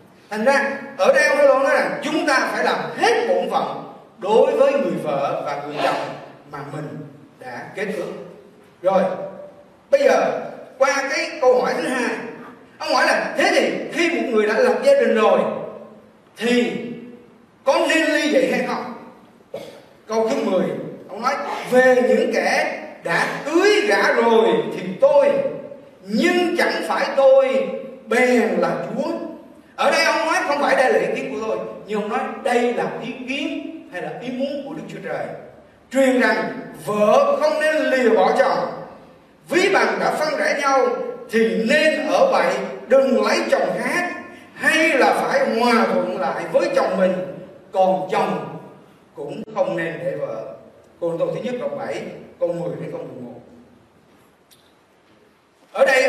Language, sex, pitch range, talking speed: Vietnamese, male, 230-300 Hz, 165 wpm